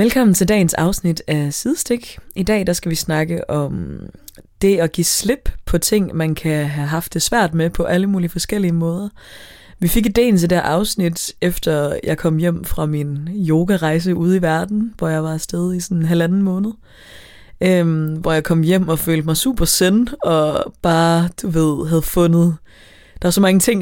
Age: 20-39